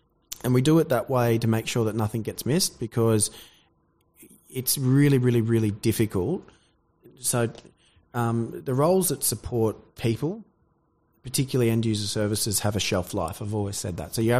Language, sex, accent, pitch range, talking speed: English, male, Australian, 95-115 Hz, 165 wpm